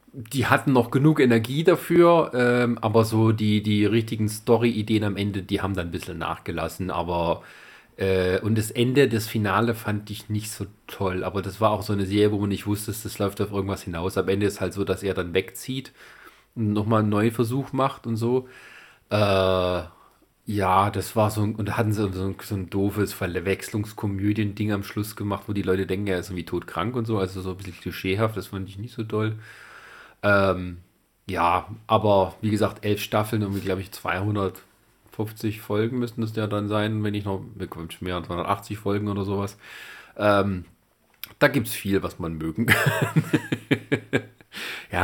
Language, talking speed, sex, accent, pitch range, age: German, 190 wpm, male, German, 100-115 Hz, 30-49